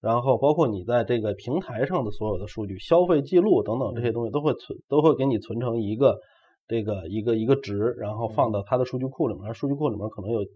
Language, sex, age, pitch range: Chinese, male, 30-49, 105-130 Hz